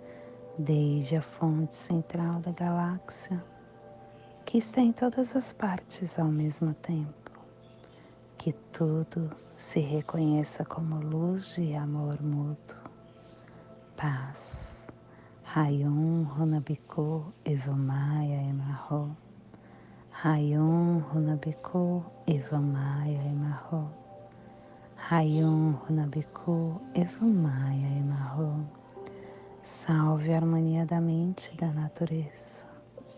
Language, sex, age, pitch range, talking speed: Portuguese, female, 40-59, 140-165 Hz, 85 wpm